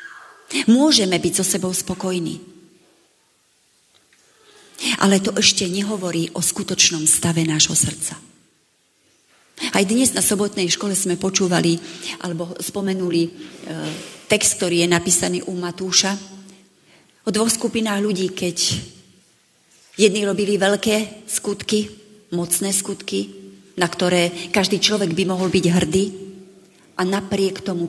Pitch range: 170-210 Hz